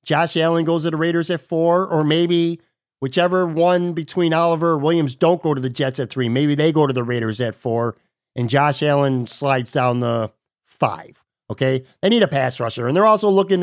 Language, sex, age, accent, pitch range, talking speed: English, male, 50-69, American, 140-180 Hz, 205 wpm